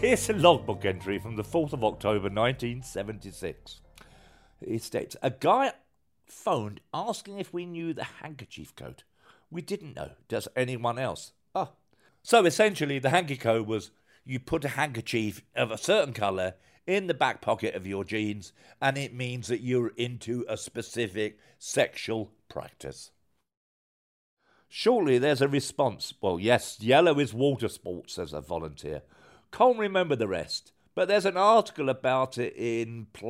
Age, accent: 50-69, British